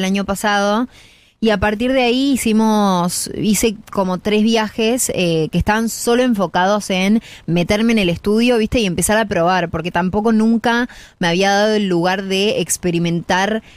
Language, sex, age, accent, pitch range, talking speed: Spanish, female, 20-39, Argentinian, 175-210 Hz, 165 wpm